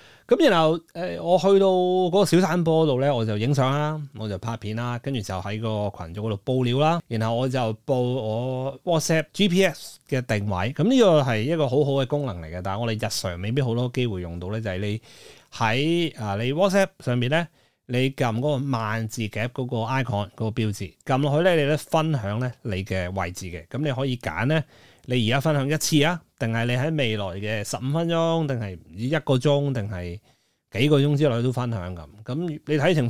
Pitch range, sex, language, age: 110-150 Hz, male, Chinese, 30-49